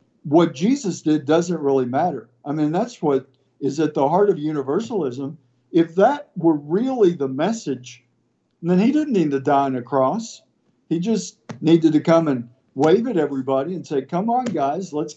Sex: male